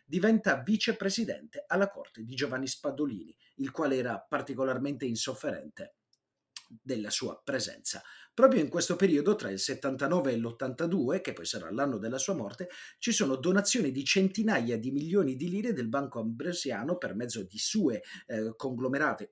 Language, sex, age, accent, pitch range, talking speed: Italian, male, 30-49, native, 130-210 Hz, 150 wpm